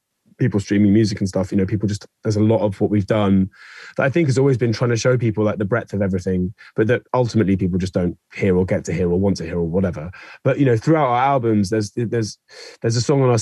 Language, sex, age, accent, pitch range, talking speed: English, male, 20-39, British, 100-115 Hz, 275 wpm